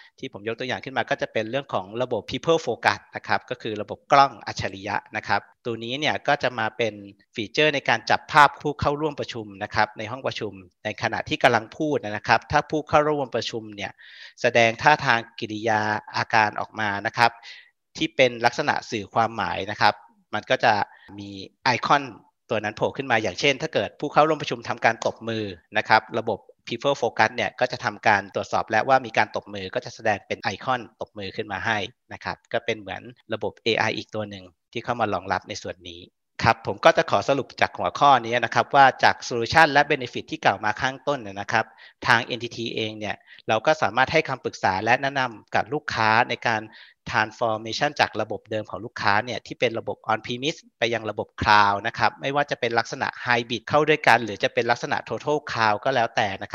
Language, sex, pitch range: Thai, male, 110-135 Hz